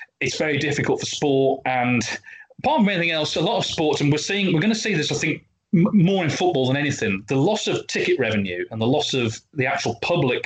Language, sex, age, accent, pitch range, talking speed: English, male, 30-49, British, 115-155 Hz, 240 wpm